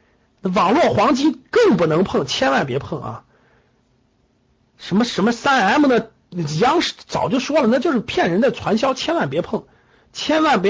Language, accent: Chinese, native